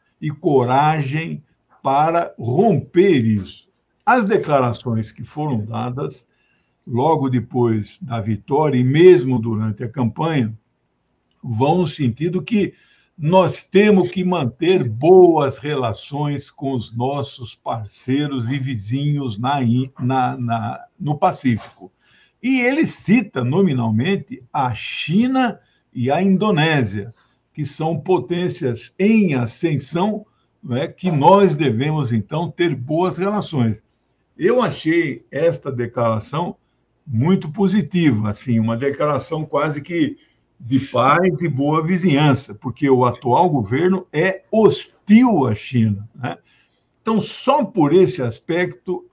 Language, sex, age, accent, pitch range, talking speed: Portuguese, male, 60-79, Brazilian, 125-180 Hz, 110 wpm